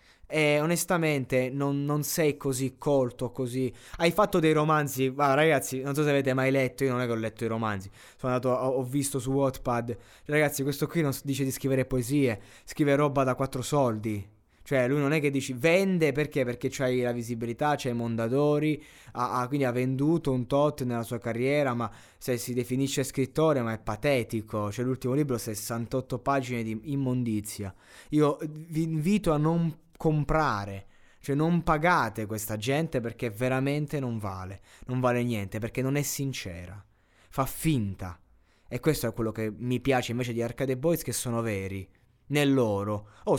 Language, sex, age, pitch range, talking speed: Italian, male, 20-39, 115-145 Hz, 175 wpm